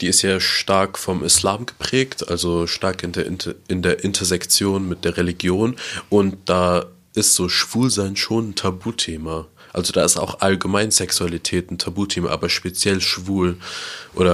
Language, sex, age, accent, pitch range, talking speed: German, male, 20-39, German, 90-100 Hz, 160 wpm